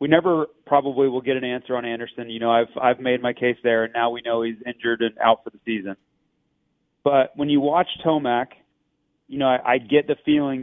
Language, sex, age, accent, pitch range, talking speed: English, male, 30-49, American, 120-145 Hz, 225 wpm